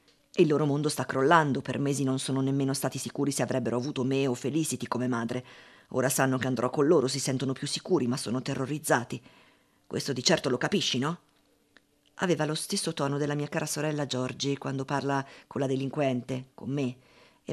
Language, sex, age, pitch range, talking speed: Italian, female, 50-69, 130-190 Hz, 190 wpm